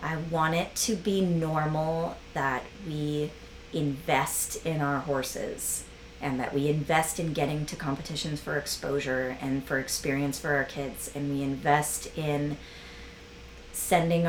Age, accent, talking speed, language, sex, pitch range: 30-49, American, 140 wpm, English, female, 140-180 Hz